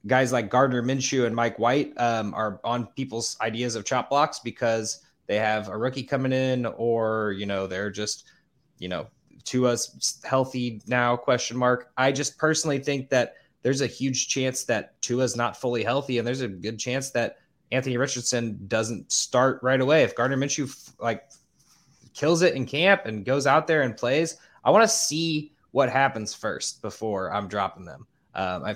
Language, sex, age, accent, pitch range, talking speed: English, male, 20-39, American, 115-135 Hz, 180 wpm